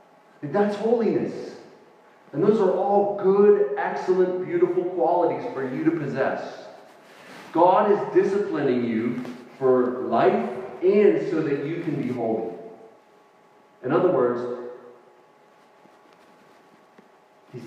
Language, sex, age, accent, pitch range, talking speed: English, male, 40-59, American, 125-205 Hz, 110 wpm